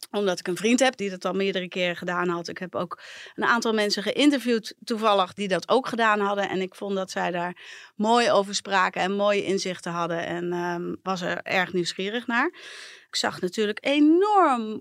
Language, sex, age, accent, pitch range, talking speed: Dutch, female, 30-49, Dutch, 175-230 Hz, 195 wpm